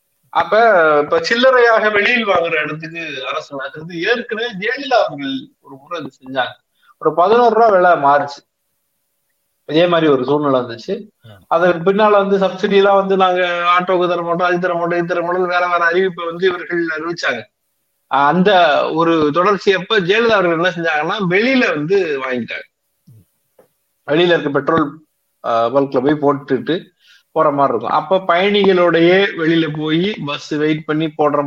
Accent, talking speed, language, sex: native, 115 wpm, Tamil, male